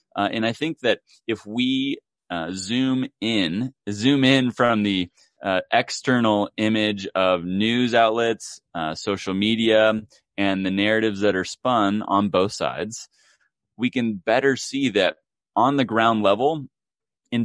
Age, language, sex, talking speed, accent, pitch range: 30-49, English, male, 145 wpm, American, 100-125 Hz